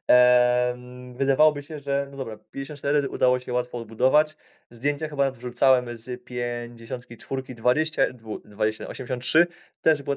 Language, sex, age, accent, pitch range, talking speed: Polish, male, 20-39, native, 120-135 Hz, 105 wpm